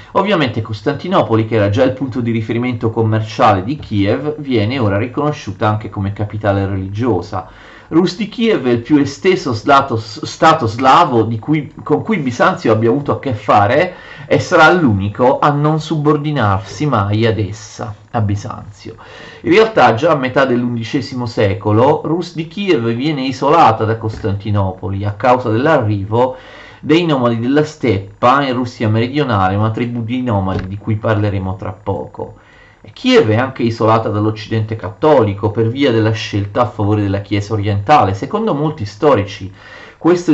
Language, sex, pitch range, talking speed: Italian, male, 105-135 Hz, 150 wpm